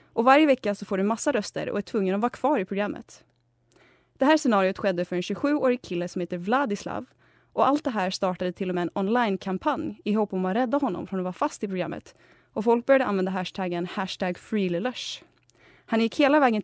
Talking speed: 215 wpm